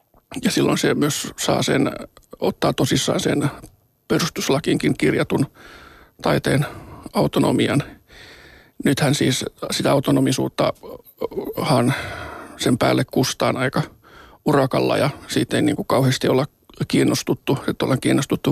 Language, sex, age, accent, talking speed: Finnish, male, 50-69, native, 105 wpm